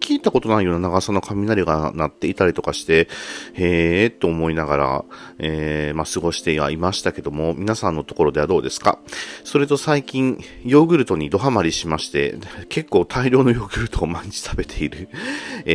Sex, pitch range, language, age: male, 80-120 Hz, Japanese, 40-59